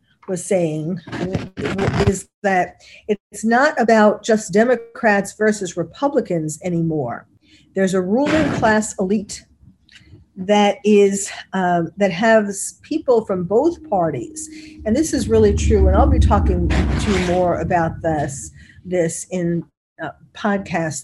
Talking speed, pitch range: 125 wpm, 170-215 Hz